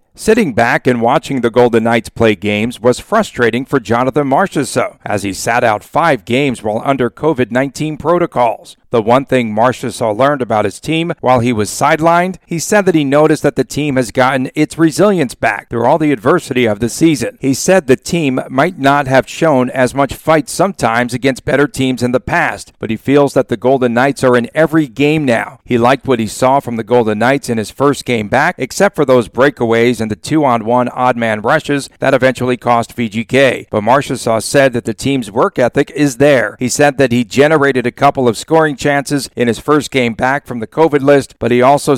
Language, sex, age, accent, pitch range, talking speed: English, male, 50-69, American, 120-145 Hz, 210 wpm